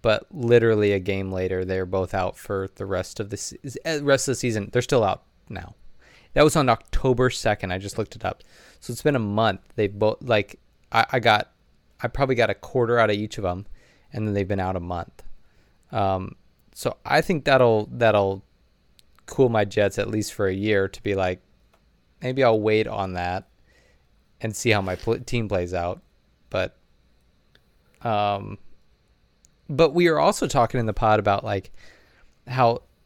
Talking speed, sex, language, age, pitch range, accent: 185 wpm, male, English, 20-39, 95-120 Hz, American